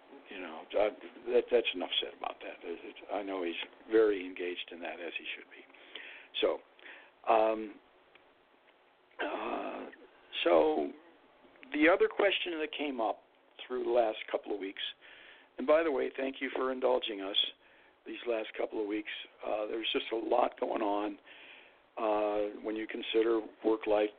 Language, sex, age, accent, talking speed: English, male, 60-79, American, 150 wpm